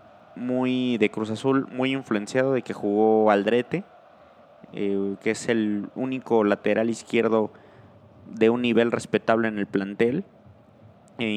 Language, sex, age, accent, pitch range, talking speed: Spanish, male, 30-49, Mexican, 105-130 Hz, 130 wpm